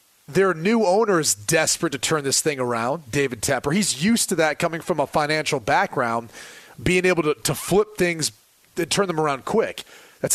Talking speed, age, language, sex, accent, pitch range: 185 wpm, 30-49, English, male, American, 145-185 Hz